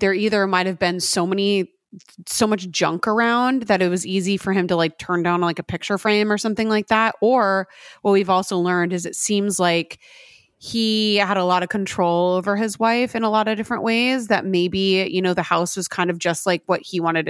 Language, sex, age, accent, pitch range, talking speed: English, female, 30-49, American, 170-210 Hz, 230 wpm